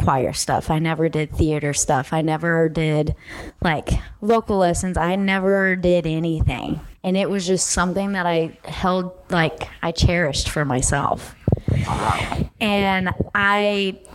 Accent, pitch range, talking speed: American, 155-195 Hz, 135 wpm